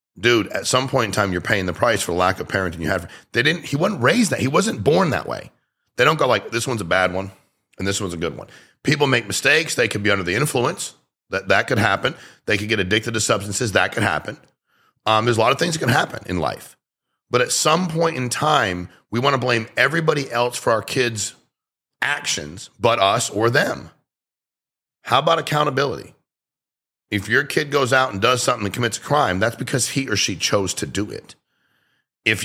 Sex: male